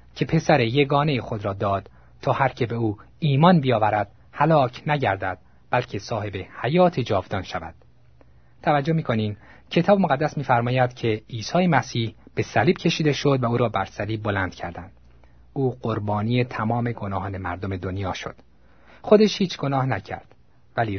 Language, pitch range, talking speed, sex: Persian, 95-130 Hz, 155 wpm, male